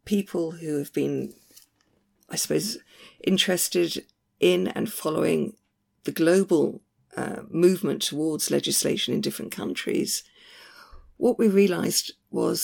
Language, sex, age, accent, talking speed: English, female, 50-69, British, 110 wpm